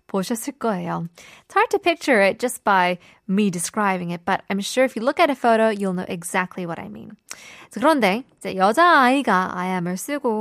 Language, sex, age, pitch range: Korean, female, 20-39, 190-280 Hz